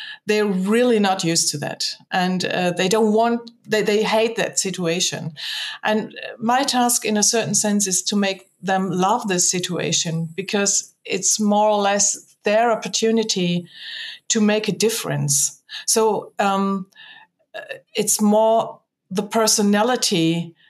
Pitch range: 180-220 Hz